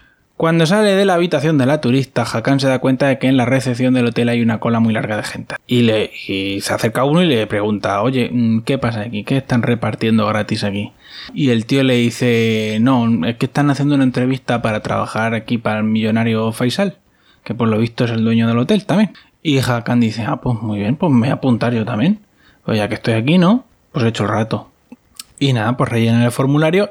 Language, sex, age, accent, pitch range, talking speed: Spanish, male, 20-39, Spanish, 115-140 Hz, 230 wpm